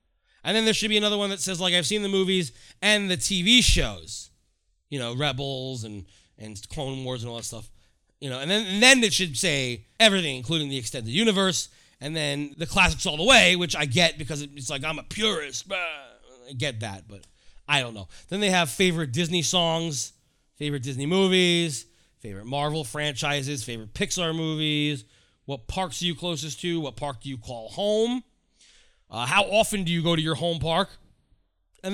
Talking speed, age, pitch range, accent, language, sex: 195 wpm, 30-49, 120-200 Hz, American, English, male